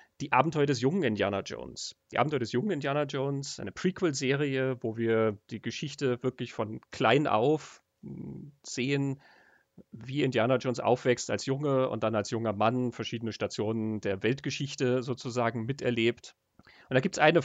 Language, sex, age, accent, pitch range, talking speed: German, male, 40-59, German, 110-135 Hz, 155 wpm